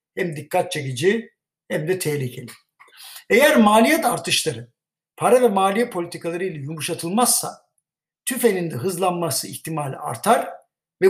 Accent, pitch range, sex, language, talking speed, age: native, 155-200 Hz, male, Turkish, 115 wpm, 60-79